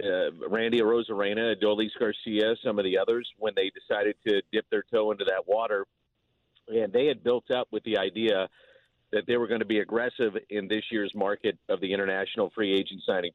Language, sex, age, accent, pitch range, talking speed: English, male, 40-59, American, 105-130 Hz, 200 wpm